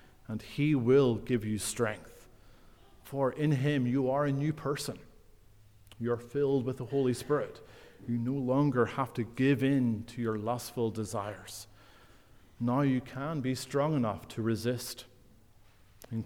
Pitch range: 110-140 Hz